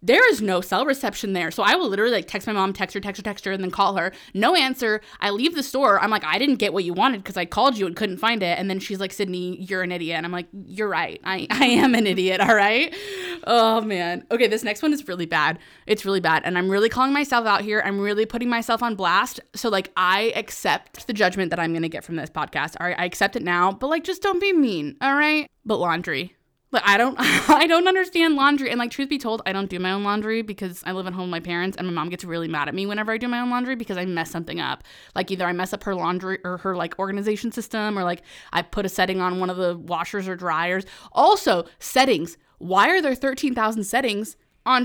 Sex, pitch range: female, 180-240 Hz